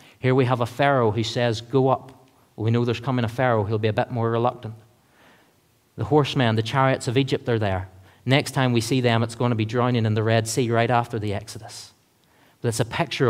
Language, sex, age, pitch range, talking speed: English, male, 40-59, 115-135 Hz, 235 wpm